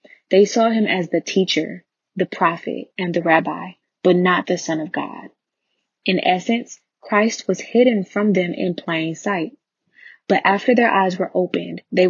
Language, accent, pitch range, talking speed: English, American, 175-200 Hz, 170 wpm